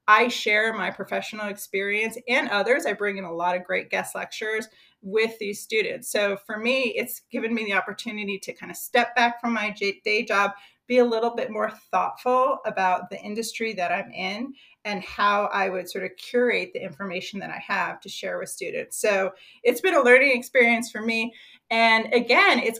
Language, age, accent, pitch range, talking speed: English, 30-49, American, 185-230 Hz, 195 wpm